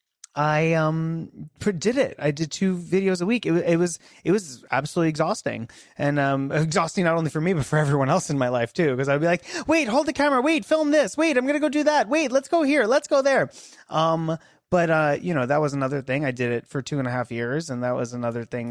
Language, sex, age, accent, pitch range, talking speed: English, male, 30-49, American, 125-170 Hz, 255 wpm